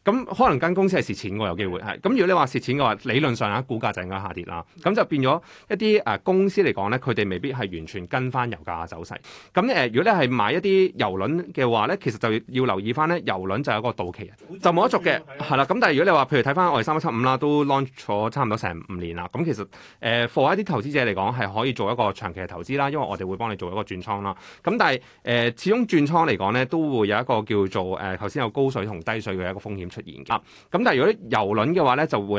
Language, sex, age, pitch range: Chinese, male, 30-49, 100-140 Hz